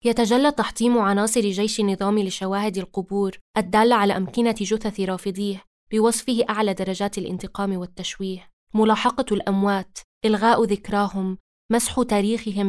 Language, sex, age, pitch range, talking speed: Arabic, female, 20-39, 195-225 Hz, 110 wpm